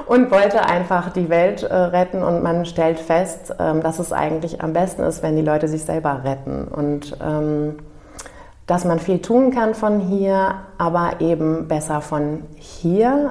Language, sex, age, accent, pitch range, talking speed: German, female, 30-49, German, 150-185 Hz, 170 wpm